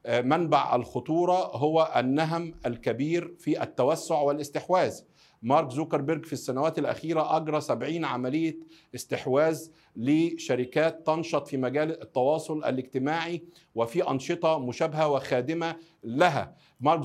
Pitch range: 145-180 Hz